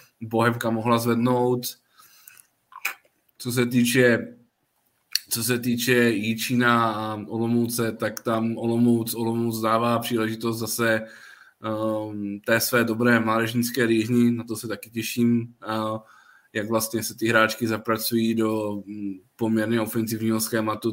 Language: Czech